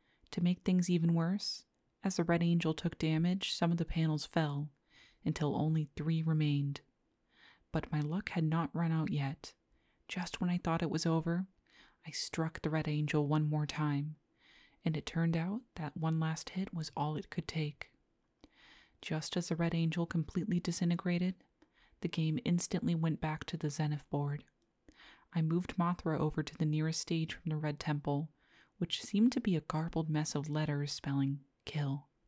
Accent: American